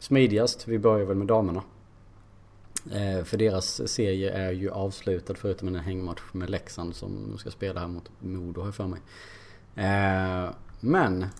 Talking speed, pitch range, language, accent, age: 155 wpm, 95-110 Hz, Swedish, Norwegian, 30-49